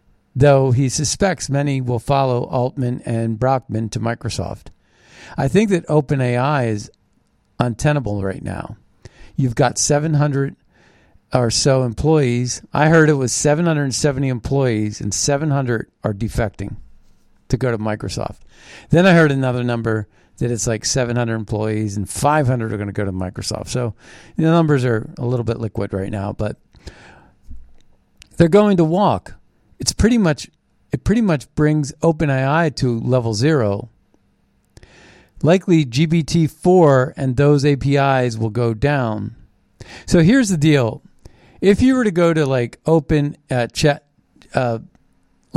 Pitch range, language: 110-150 Hz, English